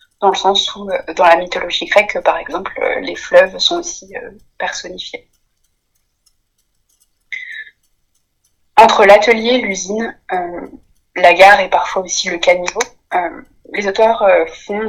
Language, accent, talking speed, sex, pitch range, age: French, French, 135 wpm, female, 185-225 Hz, 20-39